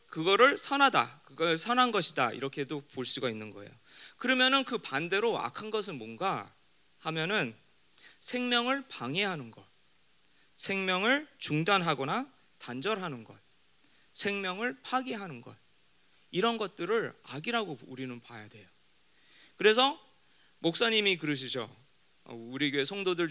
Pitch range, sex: 140-220 Hz, male